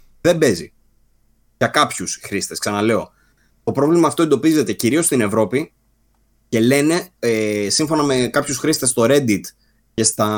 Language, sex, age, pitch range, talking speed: Greek, male, 20-39, 110-140 Hz, 140 wpm